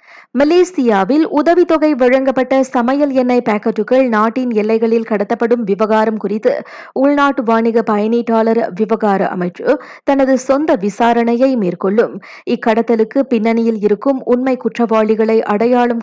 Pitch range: 220-270 Hz